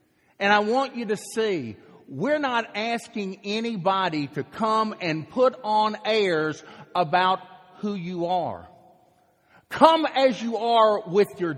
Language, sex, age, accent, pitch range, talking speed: English, male, 40-59, American, 175-250 Hz, 135 wpm